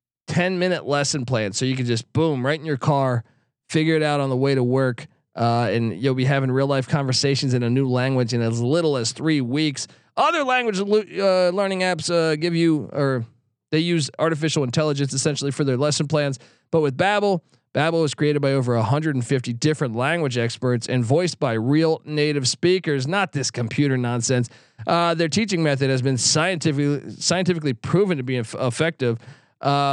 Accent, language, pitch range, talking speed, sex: American, English, 130-165 Hz, 185 wpm, male